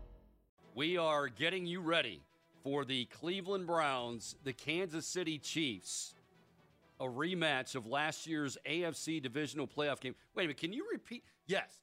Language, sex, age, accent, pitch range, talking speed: English, male, 40-59, American, 125-165 Hz, 145 wpm